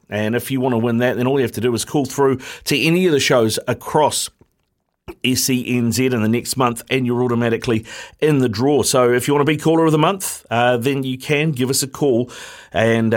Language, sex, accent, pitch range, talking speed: English, male, Australian, 110-135 Hz, 235 wpm